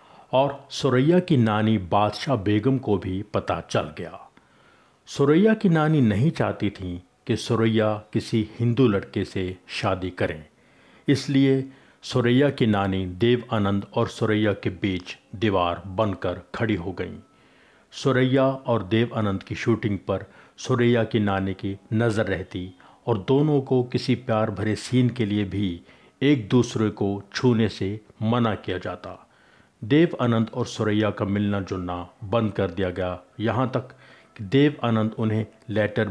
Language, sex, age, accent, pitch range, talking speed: Hindi, male, 50-69, native, 100-125 Hz, 150 wpm